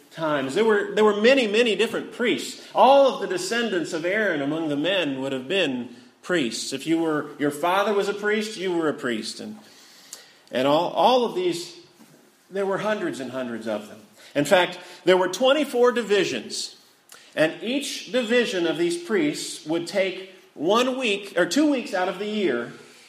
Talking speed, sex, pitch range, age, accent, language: 180 wpm, male, 160-225 Hz, 40-59, American, English